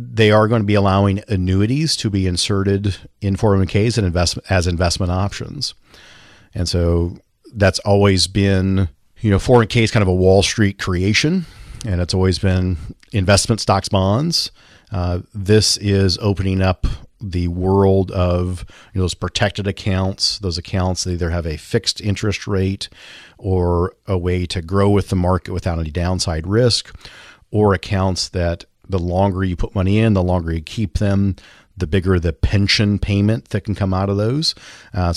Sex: male